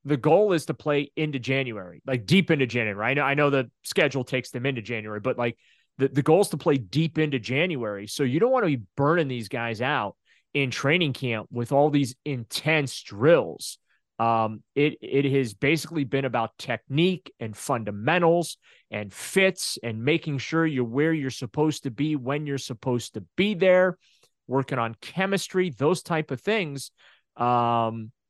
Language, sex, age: English, male, 30-49